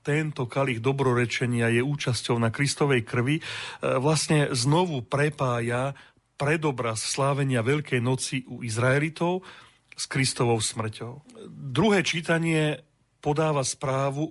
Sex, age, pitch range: male, 40-59, 125-145 Hz